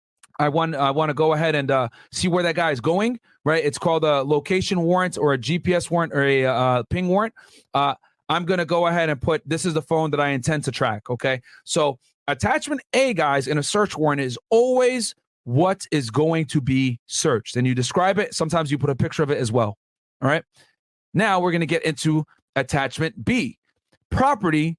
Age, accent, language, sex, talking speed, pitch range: 40-59, American, English, male, 215 wpm, 145-185 Hz